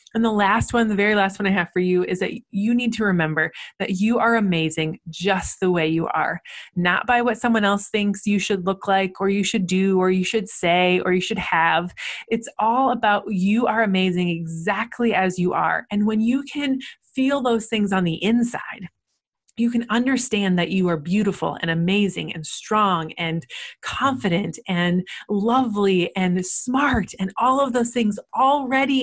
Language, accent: English, American